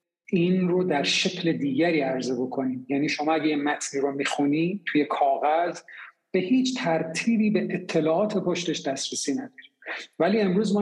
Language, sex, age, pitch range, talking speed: Persian, male, 50-69, 145-190 Hz, 145 wpm